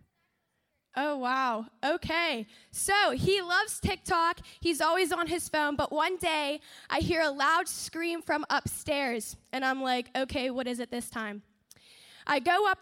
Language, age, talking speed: English, 10-29, 160 wpm